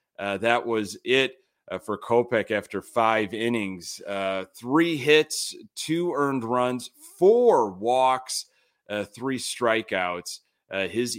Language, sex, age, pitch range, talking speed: English, male, 30-49, 105-150 Hz, 125 wpm